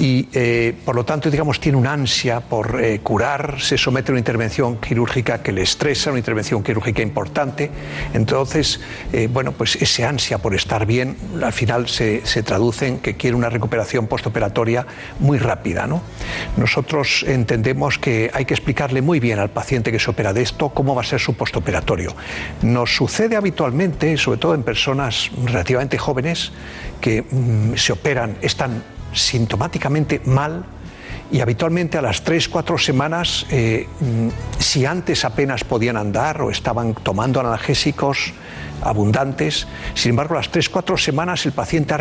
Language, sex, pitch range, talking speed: Spanish, male, 115-150 Hz, 160 wpm